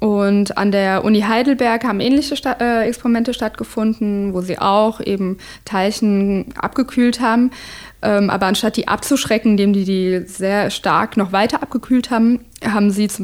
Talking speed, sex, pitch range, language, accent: 160 wpm, female, 190-230 Hz, German, German